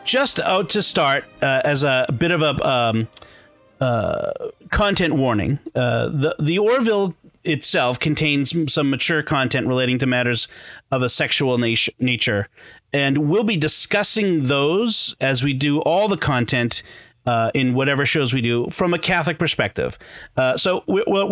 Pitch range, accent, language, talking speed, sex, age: 125-170 Hz, American, English, 160 wpm, male, 40-59